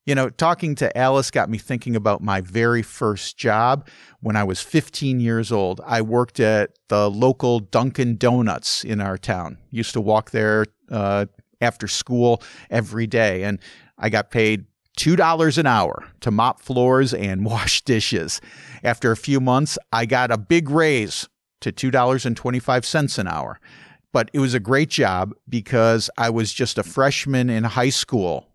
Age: 50-69